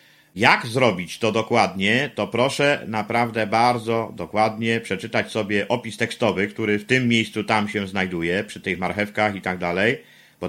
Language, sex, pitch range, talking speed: Polish, male, 105-135 Hz, 155 wpm